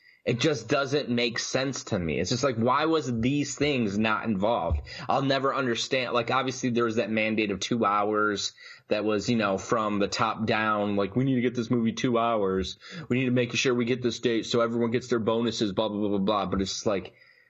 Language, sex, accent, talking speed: English, male, American, 235 wpm